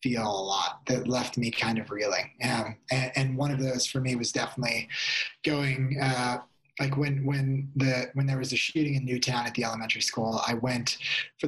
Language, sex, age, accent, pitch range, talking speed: English, male, 30-49, American, 120-140 Hz, 205 wpm